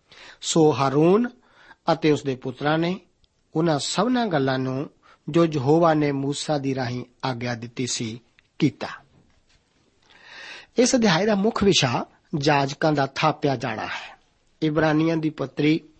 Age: 50-69